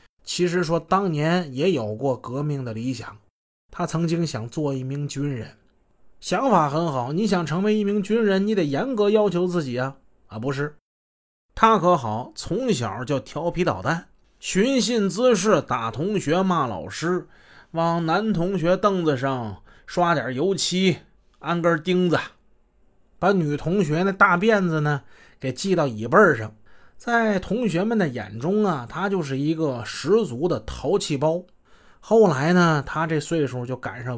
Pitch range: 140-190 Hz